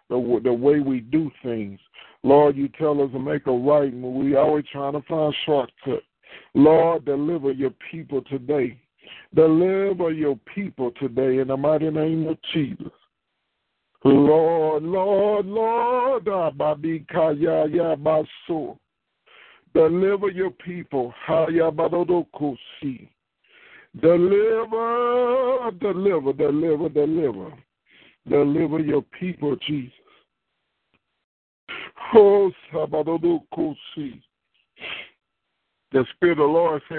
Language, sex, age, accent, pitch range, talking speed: English, male, 50-69, American, 145-175 Hz, 90 wpm